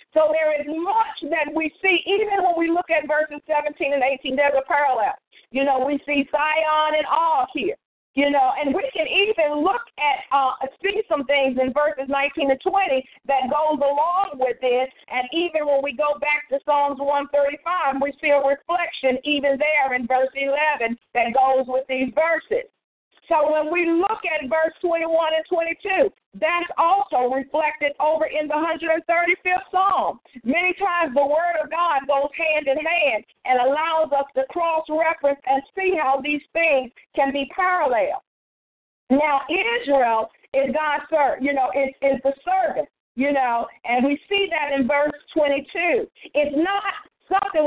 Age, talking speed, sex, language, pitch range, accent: 50-69, 170 wpm, female, English, 275-335 Hz, American